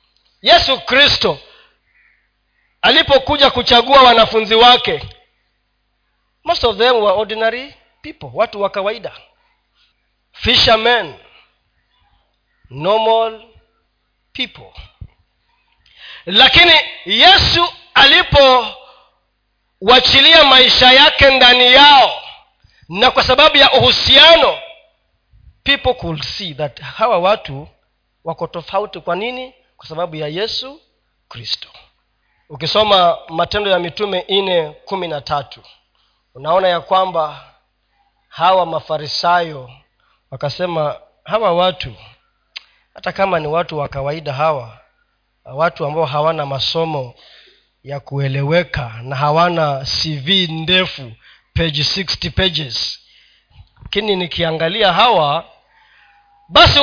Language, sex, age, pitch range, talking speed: Swahili, male, 40-59, 160-260 Hz, 90 wpm